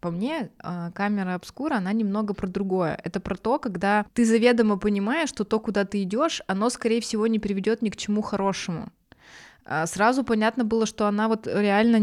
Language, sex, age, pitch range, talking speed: Russian, female, 20-39, 185-220 Hz, 180 wpm